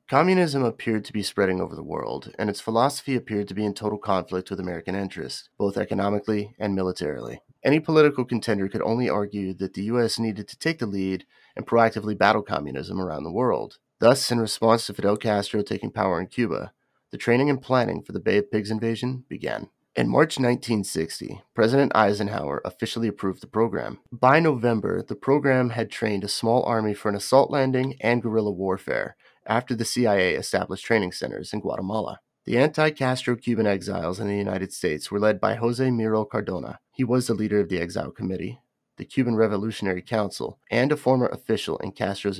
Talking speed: 185 wpm